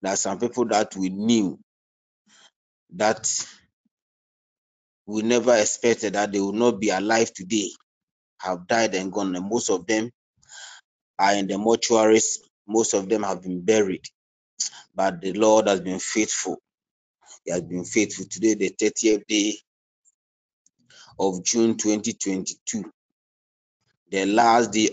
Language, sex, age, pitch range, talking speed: English, male, 30-49, 95-120 Hz, 135 wpm